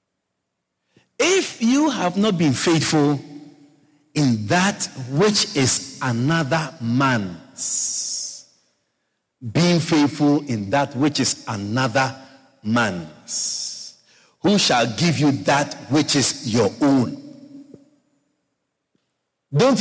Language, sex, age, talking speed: English, male, 50-69, 90 wpm